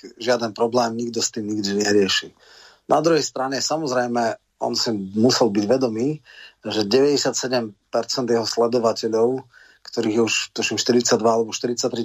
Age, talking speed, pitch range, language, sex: 30-49, 130 wpm, 110-125 Hz, Slovak, male